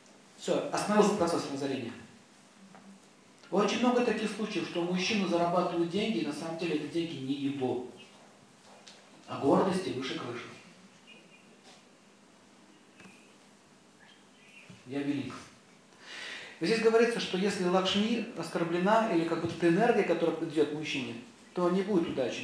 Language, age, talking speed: Russian, 40-59, 115 wpm